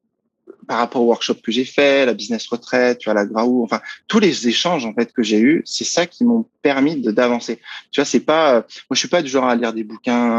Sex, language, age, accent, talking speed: male, French, 20-39, French, 260 wpm